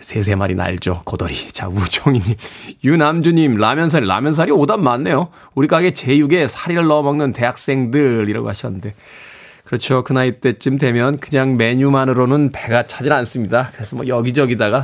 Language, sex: Korean, male